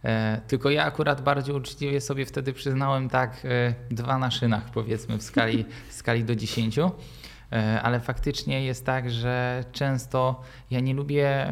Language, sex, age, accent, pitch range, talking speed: Polish, male, 20-39, native, 120-140 Hz, 140 wpm